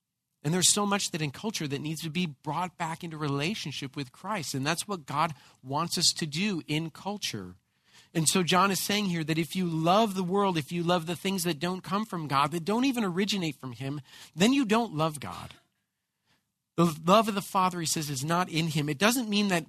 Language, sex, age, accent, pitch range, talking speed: English, male, 40-59, American, 150-215 Hz, 230 wpm